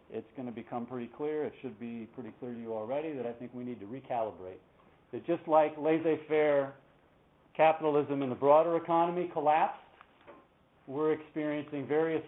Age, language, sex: 50-69, English, male